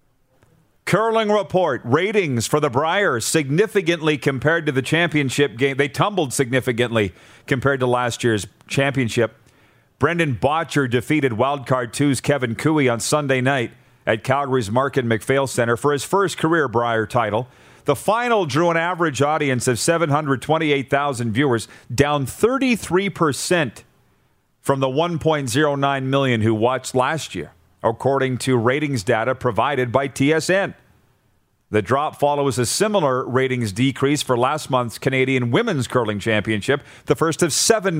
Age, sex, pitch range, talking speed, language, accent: 40-59, male, 125-150 Hz, 135 wpm, English, American